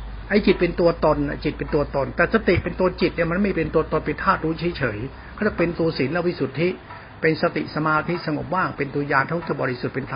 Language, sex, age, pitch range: Thai, male, 60-79, 145-185 Hz